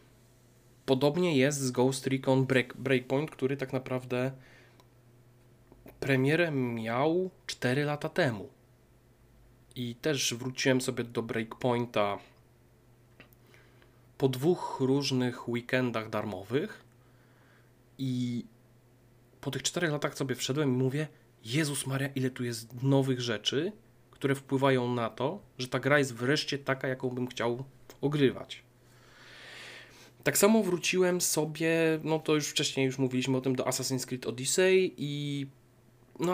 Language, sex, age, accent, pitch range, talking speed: Polish, male, 20-39, native, 120-135 Hz, 120 wpm